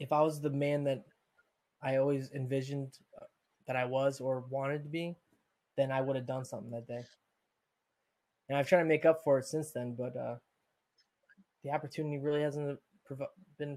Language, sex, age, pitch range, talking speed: English, male, 20-39, 130-150 Hz, 180 wpm